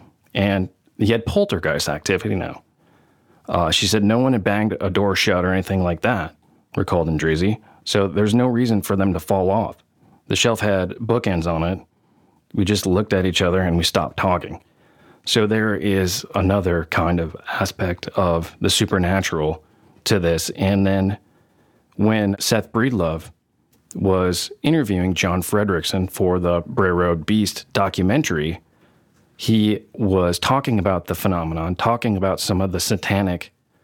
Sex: male